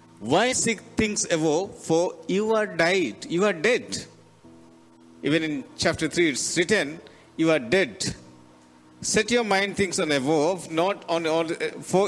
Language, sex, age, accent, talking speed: Telugu, male, 50-69, native, 155 wpm